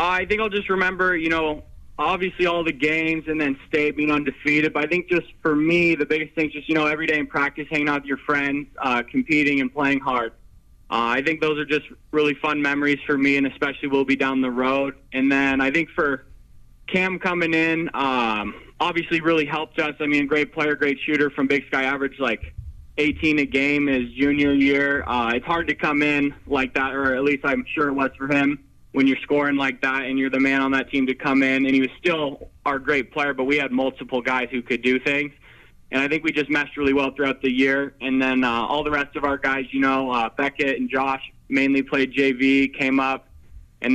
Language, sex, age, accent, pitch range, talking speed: English, male, 20-39, American, 130-150 Hz, 235 wpm